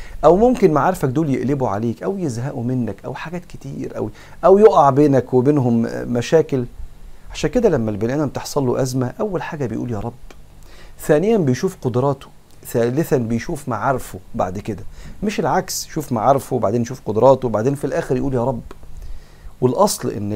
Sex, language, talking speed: male, Arabic, 160 wpm